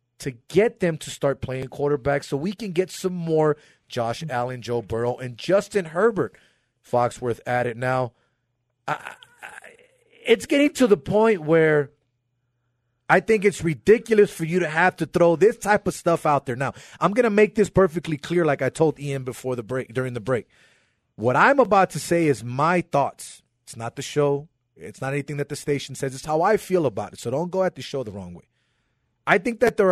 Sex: male